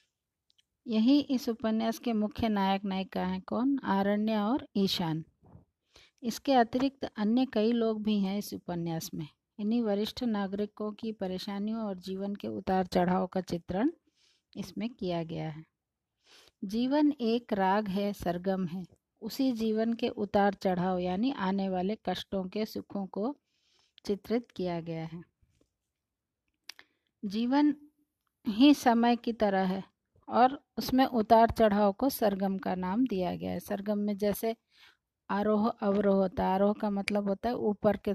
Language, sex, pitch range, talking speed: Hindi, female, 190-230 Hz, 145 wpm